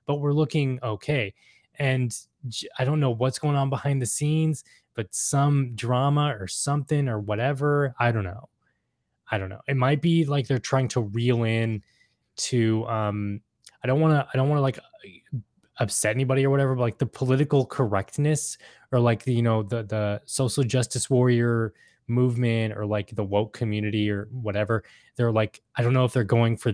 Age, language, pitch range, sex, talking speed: 20-39, English, 110-135 Hz, male, 185 wpm